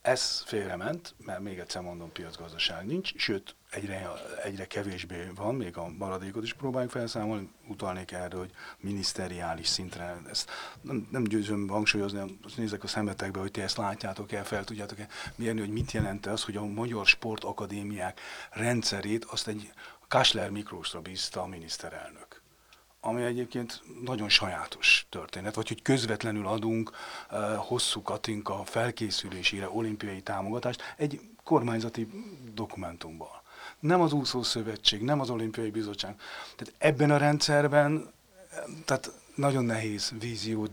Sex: male